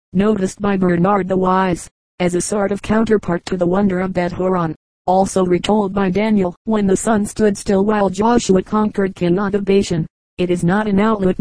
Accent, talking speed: American, 175 wpm